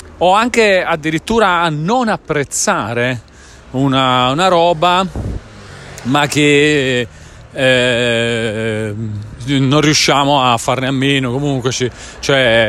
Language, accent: Italian, native